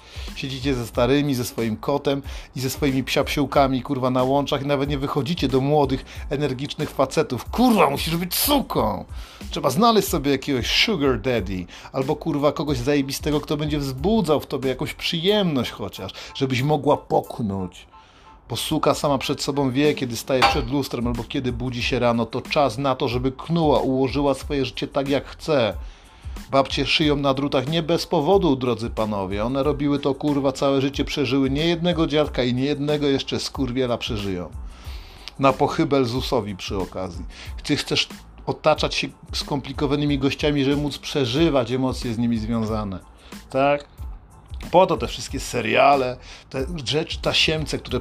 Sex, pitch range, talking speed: male, 120-145 Hz, 155 wpm